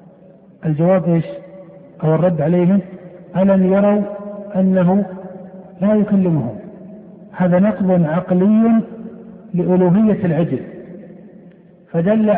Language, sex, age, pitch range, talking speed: Arabic, male, 50-69, 175-195 Hz, 80 wpm